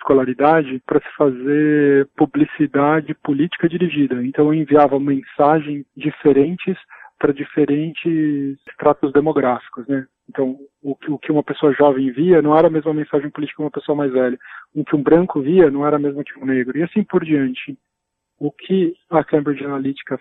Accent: Brazilian